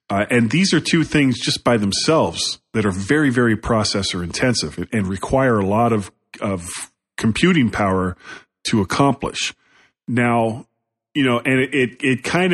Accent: American